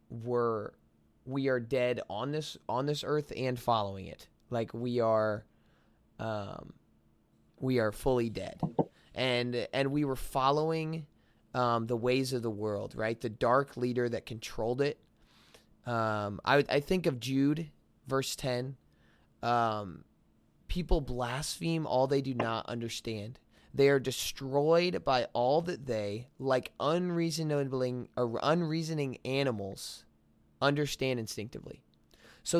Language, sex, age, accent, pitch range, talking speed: English, male, 20-39, American, 115-145 Hz, 125 wpm